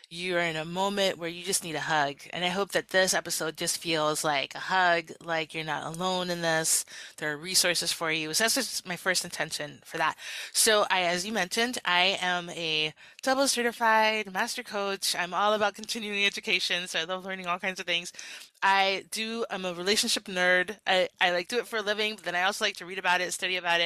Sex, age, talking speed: female, 20-39, 225 wpm